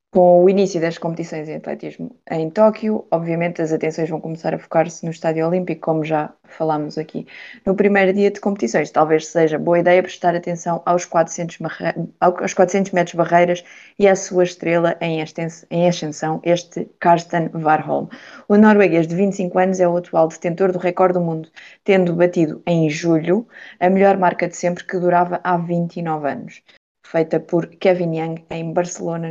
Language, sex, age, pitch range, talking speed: Portuguese, female, 20-39, 165-185 Hz, 170 wpm